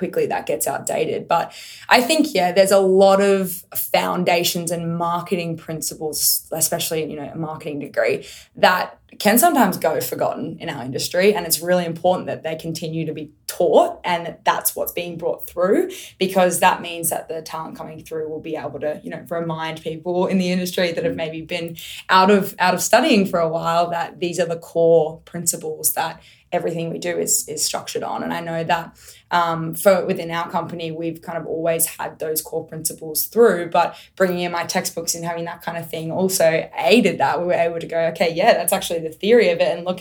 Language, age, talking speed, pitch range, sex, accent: English, 20-39, 210 wpm, 160-185 Hz, female, Australian